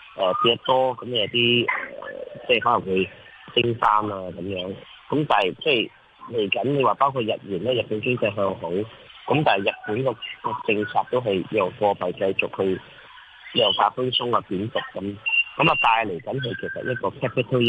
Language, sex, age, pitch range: Chinese, male, 20-39, 100-125 Hz